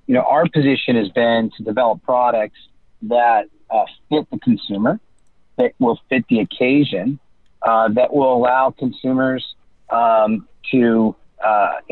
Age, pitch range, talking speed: 40-59, 115-140 Hz, 135 wpm